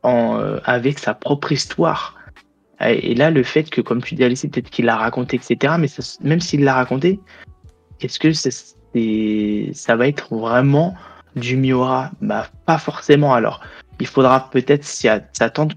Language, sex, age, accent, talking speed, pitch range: French, male, 20-39, French, 180 wpm, 115-145 Hz